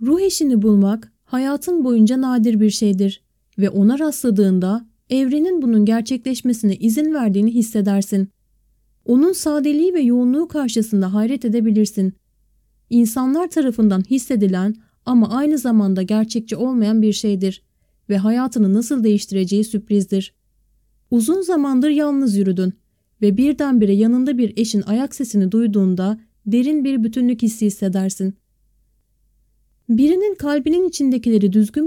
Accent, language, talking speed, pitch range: native, Turkish, 115 wpm, 205-265 Hz